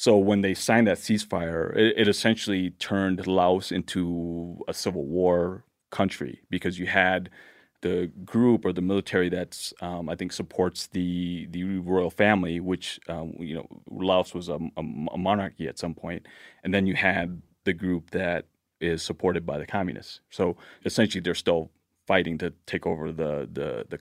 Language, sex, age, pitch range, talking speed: English, male, 30-49, 85-95 Hz, 170 wpm